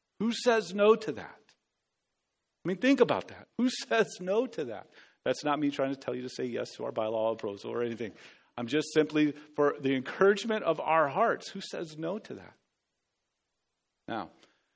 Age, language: 40-59, English